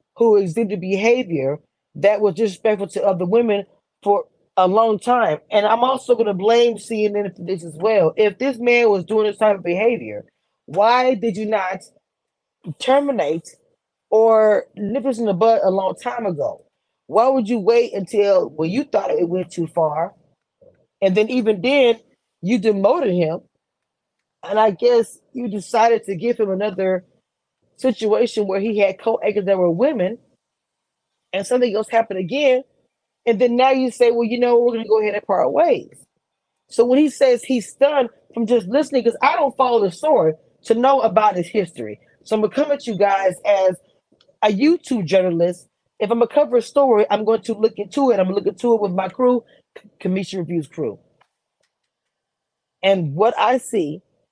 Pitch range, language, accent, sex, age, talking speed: 195-240 Hz, English, American, female, 20-39, 180 wpm